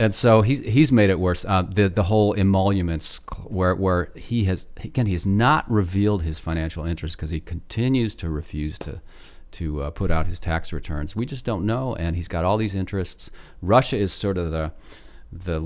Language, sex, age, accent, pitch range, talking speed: English, male, 40-59, American, 80-105 Hz, 205 wpm